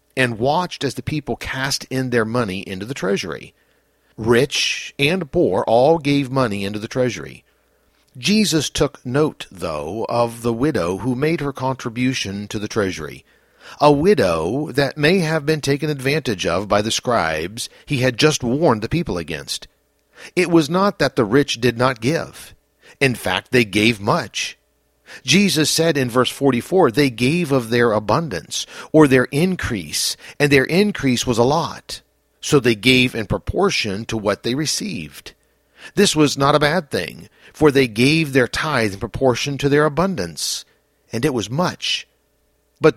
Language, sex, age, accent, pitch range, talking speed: English, male, 50-69, American, 115-150 Hz, 165 wpm